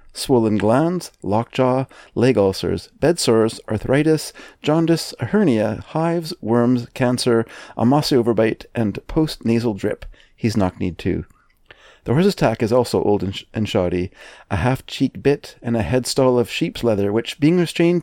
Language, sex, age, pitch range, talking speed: English, male, 40-59, 105-135 Hz, 150 wpm